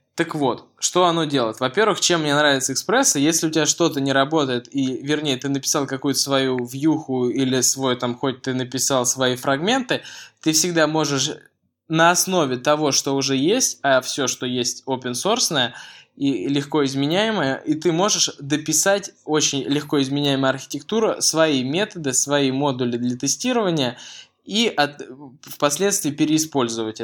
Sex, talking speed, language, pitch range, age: male, 150 wpm, Russian, 135-180 Hz, 20-39